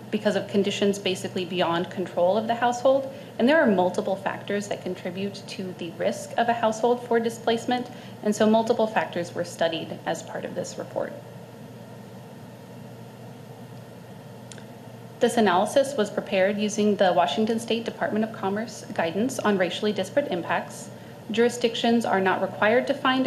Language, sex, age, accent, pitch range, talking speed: English, female, 30-49, American, 185-235 Hz, 145 wpm